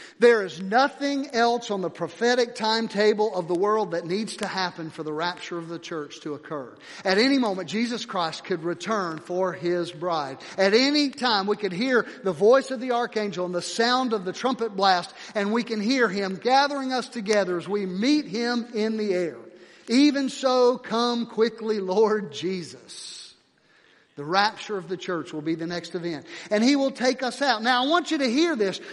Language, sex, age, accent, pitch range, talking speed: English, male, 50-69, American, 190-255 Hz, 195 wpm